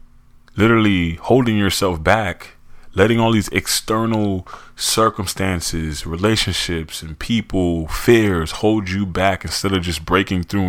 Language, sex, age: English, male, 20-39